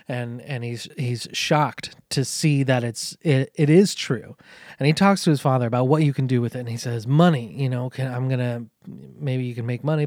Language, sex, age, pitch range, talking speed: English, male, 20-39, 130-155 Hz, 250 wpm